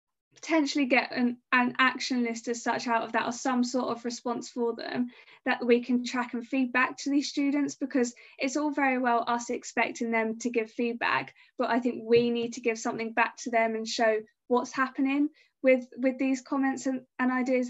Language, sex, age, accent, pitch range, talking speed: English, female, 20-39, British, 225-255 Hz, 205 wpm